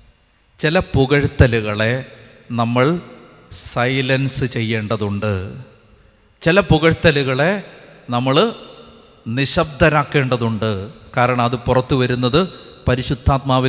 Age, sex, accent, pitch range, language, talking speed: 30-49, male, native, 120-175 Hz, Malayalam, 60 wpm